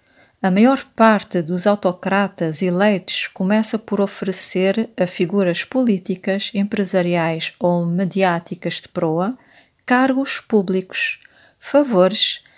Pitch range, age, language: 185-235 Hz, 40-59, Portuguese